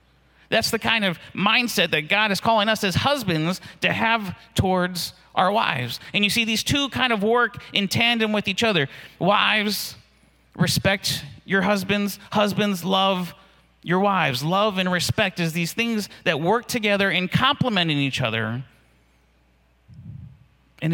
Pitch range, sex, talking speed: 140-205 Hz, male, 150 wpm